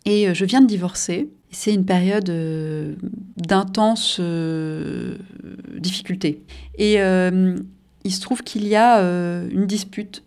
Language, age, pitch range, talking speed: French, 30-49, 170-215 Hz, 135 wpm